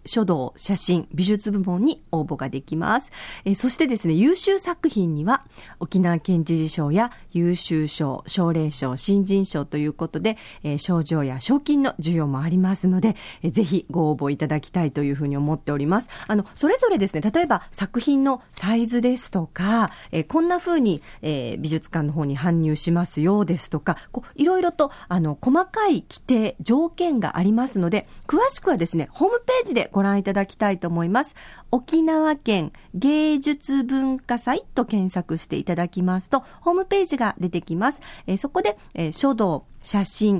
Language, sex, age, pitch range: Japanese, female, 40-59, 165-250 Hz